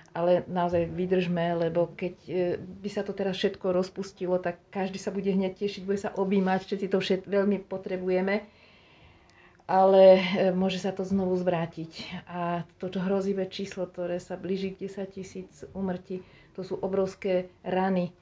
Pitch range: 175-190 Hz